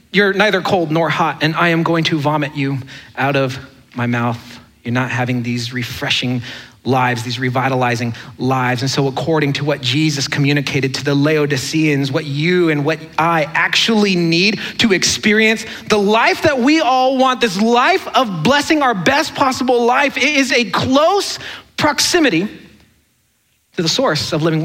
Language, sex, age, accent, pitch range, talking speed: English, male, 40-59, American, 145-230 Hz, 165 wpm